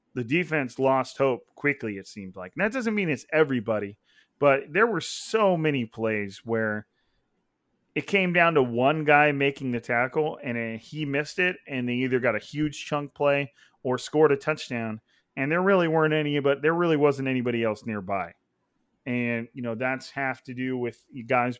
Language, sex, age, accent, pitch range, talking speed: English, male, 30-49, American, 120-155 Hz, 185 wpm